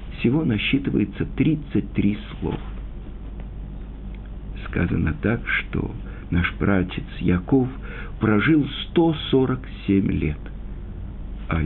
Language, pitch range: Russian, 90-145 Hz